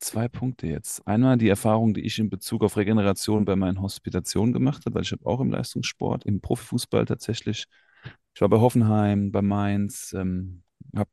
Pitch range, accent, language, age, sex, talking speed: 100-120 Hz, German, German, 30-49, male, 185 wpm